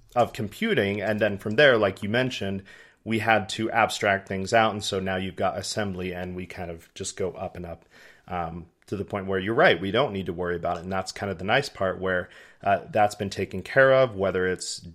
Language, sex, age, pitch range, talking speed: English, male, 30-49, 95-115 Hz, 240 wpm